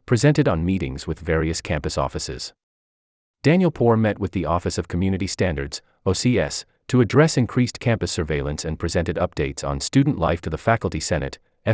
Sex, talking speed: male, 165 wpm